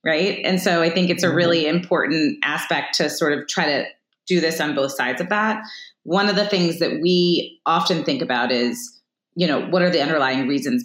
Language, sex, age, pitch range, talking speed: English, female, 30-49, 150-195 Hz, 215 wpm